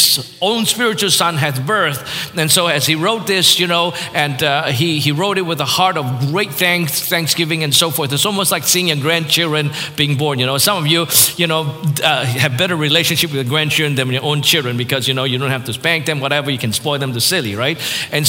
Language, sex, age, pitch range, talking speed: English, male, 50-69, 150-180 Hz, 240 wpm